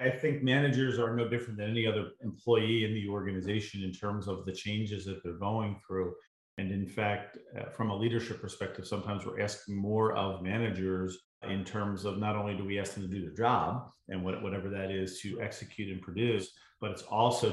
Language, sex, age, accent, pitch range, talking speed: English, male, 40-59, American, 95-115 Hz, 200 wpm